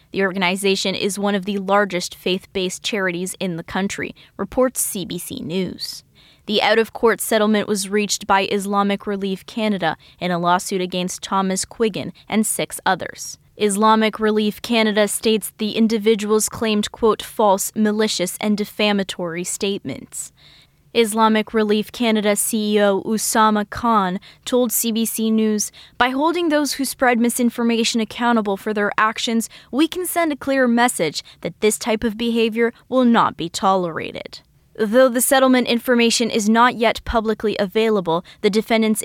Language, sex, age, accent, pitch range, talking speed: English, female, 10-29, American, 195-225 Hz, 140 wpm